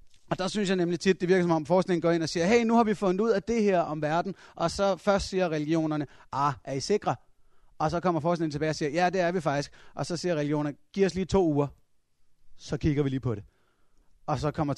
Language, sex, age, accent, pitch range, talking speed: Danish, male, 30-49, native, 120-170 Hz, 265 wpm